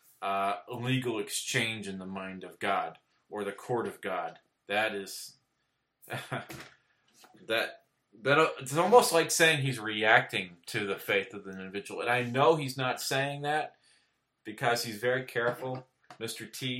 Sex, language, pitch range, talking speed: male, English, 100-130 Hz, 155 wpm